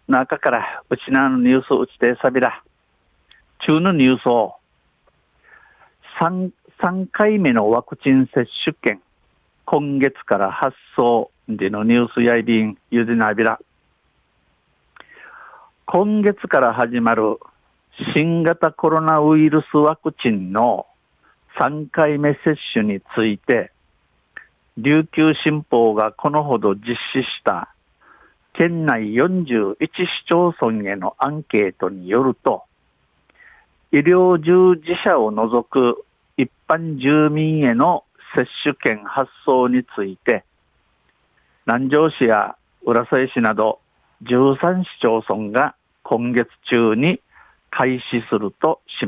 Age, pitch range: 50-69, 120-160 Hz